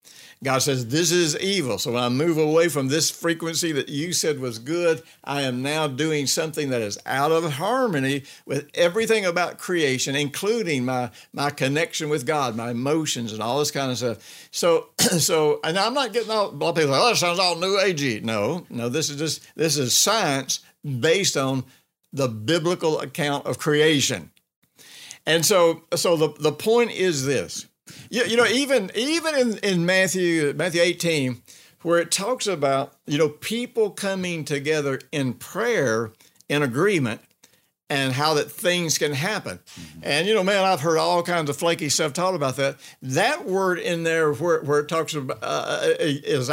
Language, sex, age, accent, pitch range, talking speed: English, male, 60-79, American, 140-180 Hz, 180 wpm